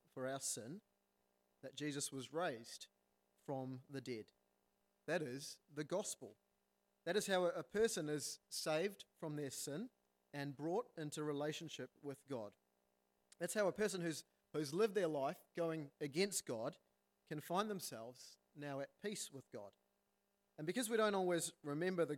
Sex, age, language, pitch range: male, 30-49, English, 135-170 Hz